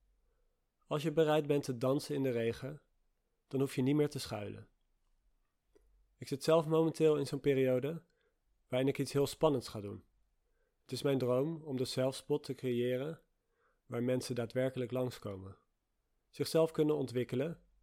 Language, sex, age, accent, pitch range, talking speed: Dutch, male, 40-59, Dutch, 120-145 Hz, 155 wpm